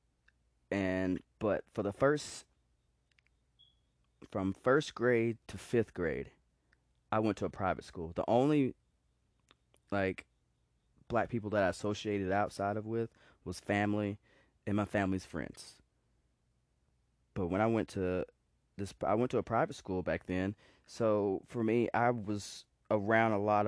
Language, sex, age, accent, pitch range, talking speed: English, male, 20-39, American, 90-105 Hz, 140 wpm